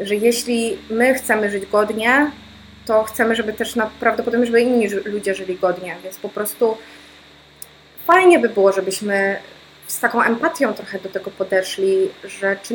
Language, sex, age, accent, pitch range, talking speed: Polish, female, 20-39, native, 190-220 Hz, 150 wpm